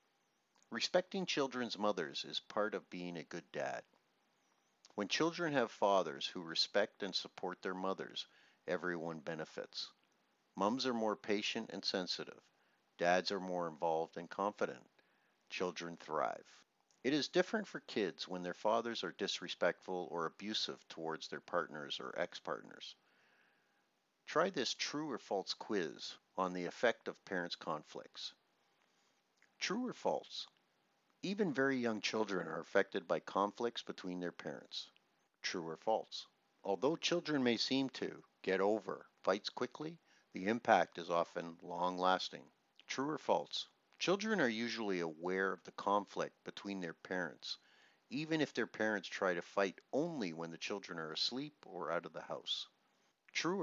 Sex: male